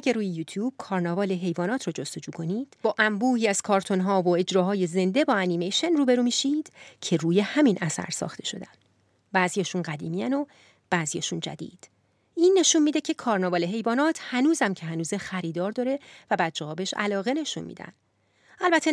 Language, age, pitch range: Persian, 30-49, 175-270 Hz